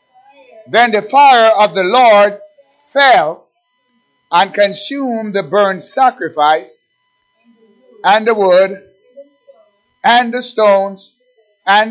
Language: English